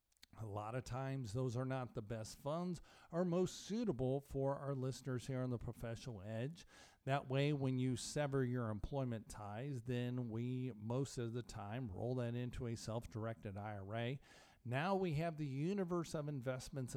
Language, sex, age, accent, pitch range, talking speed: English, male, 50-69, American, 115-145 Hz, 170 wpm